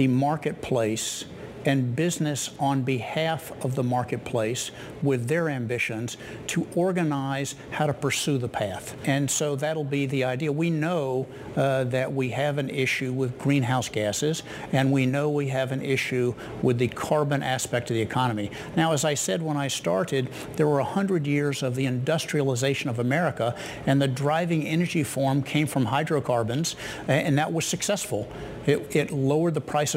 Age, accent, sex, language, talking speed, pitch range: 60-79, American, male, English, 170 wpm, 130-155 Hz